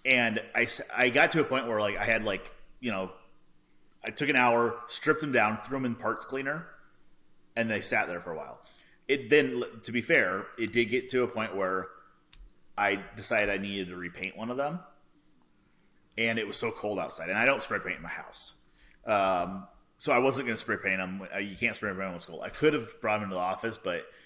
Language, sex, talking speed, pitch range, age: English, male, 235 wpm, 100-140 Hz, 30-49